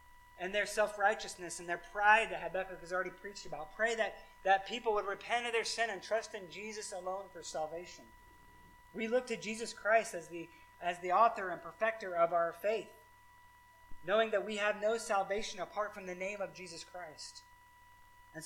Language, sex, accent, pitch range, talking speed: English, male, American, 175-225 Hz, 180 wpm